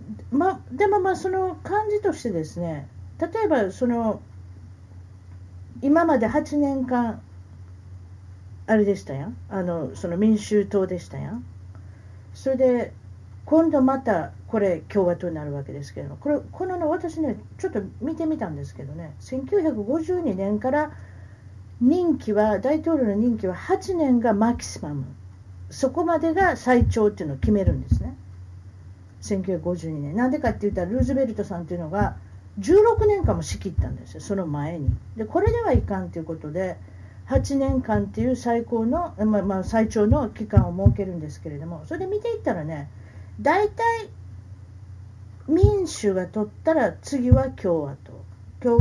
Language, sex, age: Japanese, female, 50-69